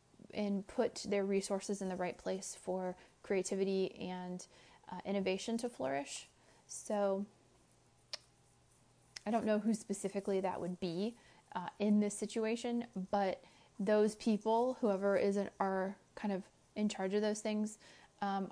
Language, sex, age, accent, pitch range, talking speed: English, female, 30-49, American, 185-210 Hz, 140 wpm